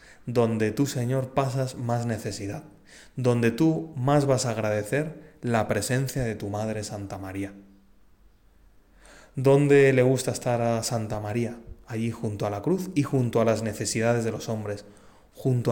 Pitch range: 105-135 Hz